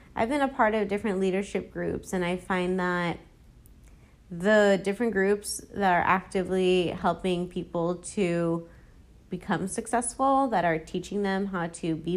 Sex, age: female, 30-49